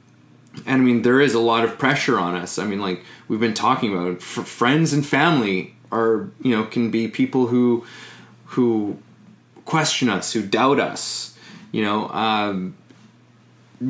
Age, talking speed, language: 20-39, 160 wpm, English